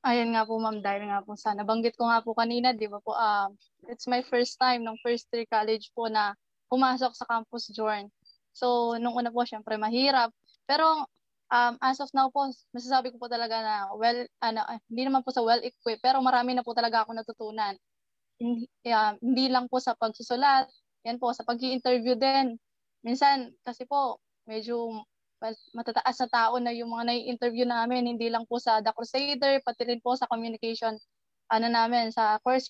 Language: Filipino